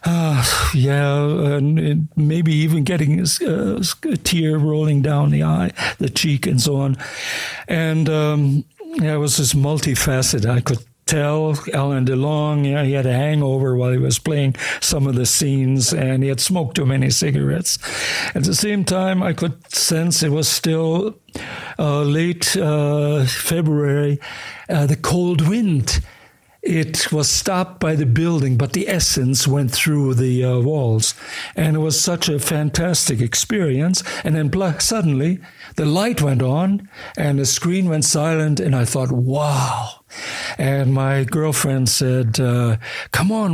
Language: English